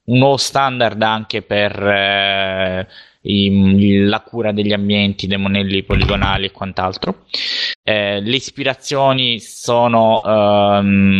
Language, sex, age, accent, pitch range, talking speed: Italian, male, 20-39, native, 100-110 Hz, 105 wpm